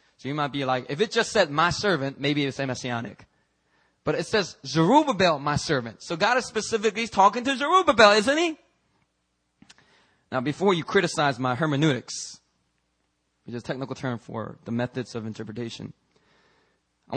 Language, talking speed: English, 165 wpm